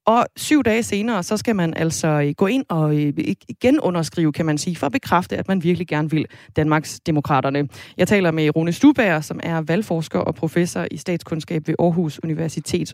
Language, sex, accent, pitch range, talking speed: Danish, female, native, 155-205 Hz, 185 wpm